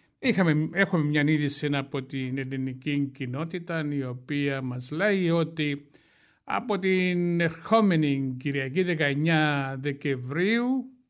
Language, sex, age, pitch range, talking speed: English, male, 60-79, 145-180 Hz, 95 wpm